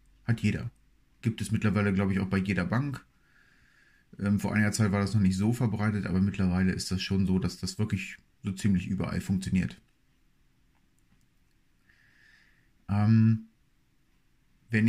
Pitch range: 100-115 Hz